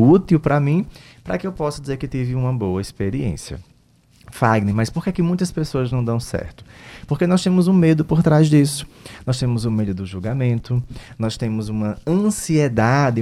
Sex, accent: male, Brazilian